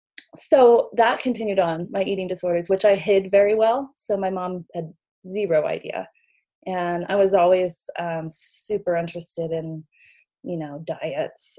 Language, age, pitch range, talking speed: English, 30-49, 170-210 Hz, 150 wpm